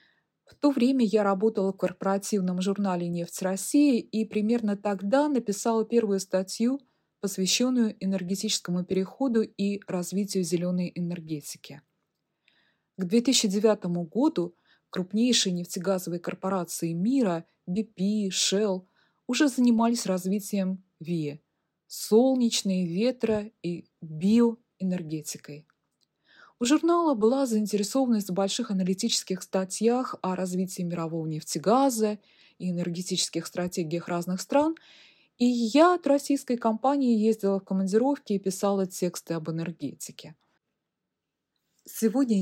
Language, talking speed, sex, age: Russian, 100 wpm, female, 20-39